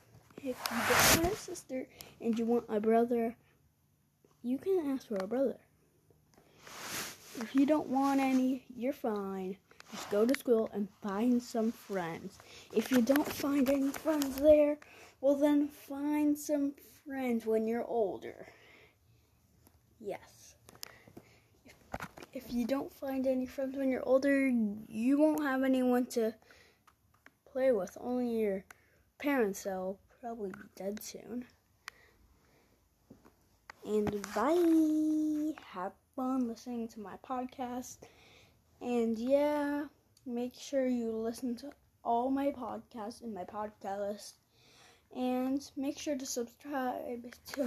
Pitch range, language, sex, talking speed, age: 225-285 Hz, English, female, 125 wpm, 20-39